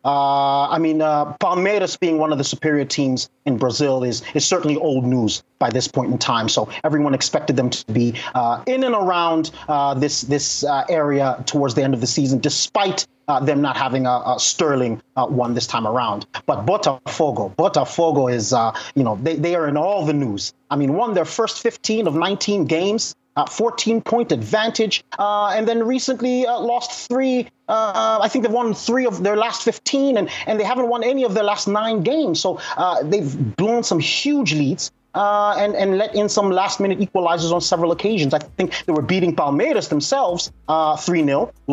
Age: 30-49